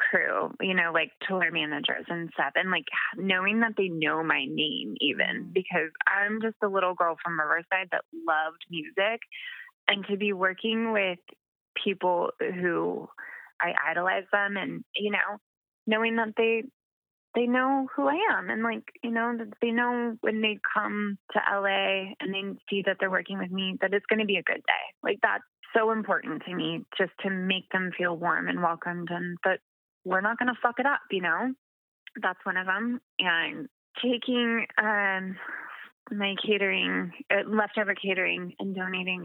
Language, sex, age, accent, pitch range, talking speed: English, female, 20-39, American, 180-225 Hz, 175 wpm